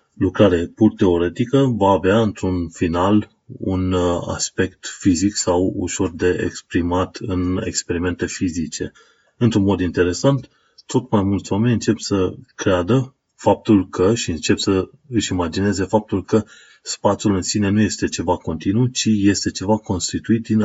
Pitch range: 90-110 Hz